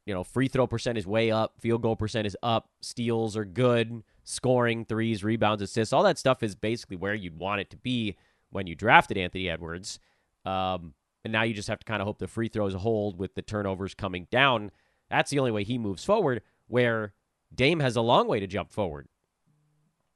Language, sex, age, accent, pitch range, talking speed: English, male, 30-49, American, 95-120 Hz, 210 wpm